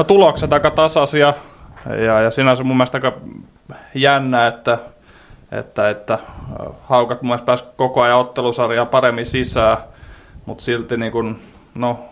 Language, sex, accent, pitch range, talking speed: Finnish, male, native, 115-125 Hz, 125 wpm